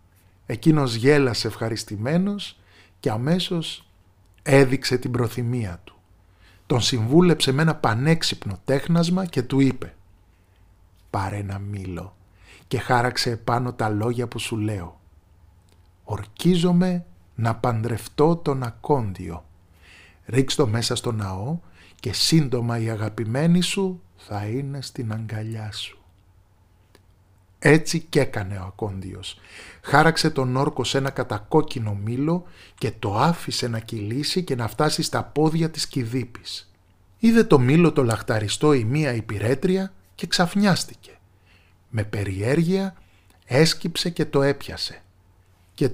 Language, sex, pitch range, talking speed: Greek, male, 95-145 Hz, 120 wpm